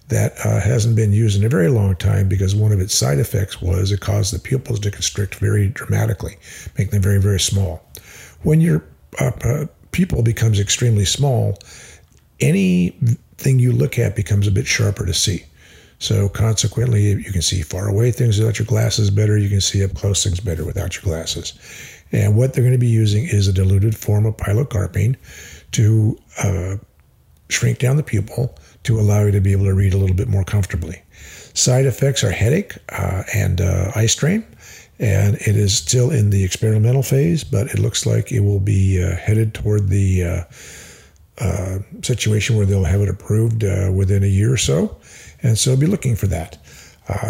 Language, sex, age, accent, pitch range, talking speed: English, male, 50-69, American, 95-120 Hz, 190 wpm